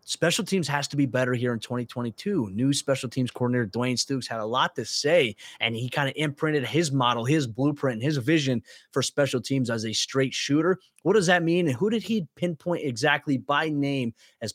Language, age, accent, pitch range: English, 20-39, American, 125-150 Hz